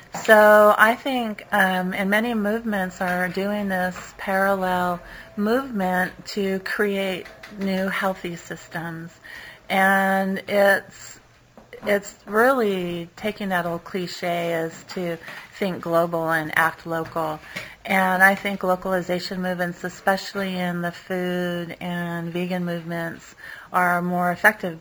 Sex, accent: female, American